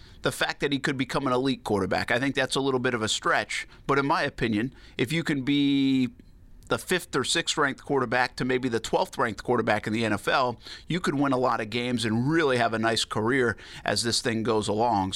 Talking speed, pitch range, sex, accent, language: 225 wpm, 110-135 Hz, male, American, English